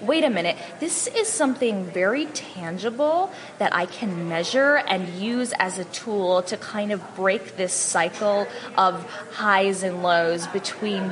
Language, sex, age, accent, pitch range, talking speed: English, female, 10-29, American, 185-225 Hz, 150 wpm